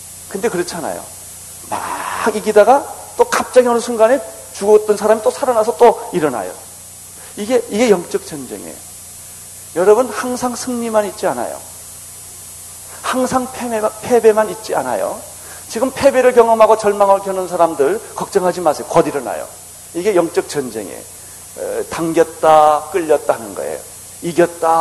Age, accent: 40-59, native